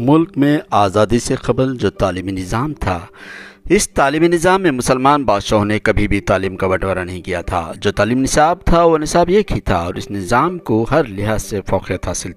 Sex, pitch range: male, 105-145 Hz